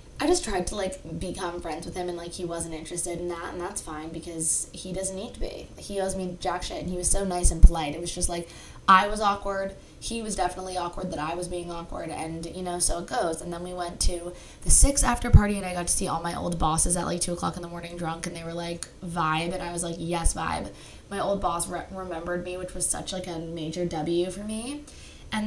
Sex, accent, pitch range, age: female, American, 170-185 Hz, 20-39